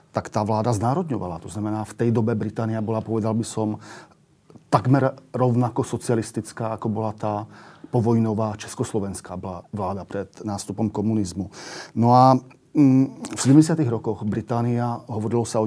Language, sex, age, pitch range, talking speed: Slovak, male, 40-59, 105-125 Hz, 135 wpm